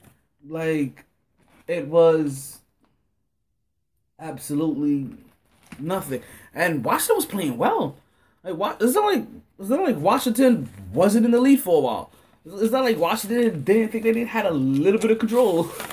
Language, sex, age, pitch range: English, male, 20-39, 120-165 Hz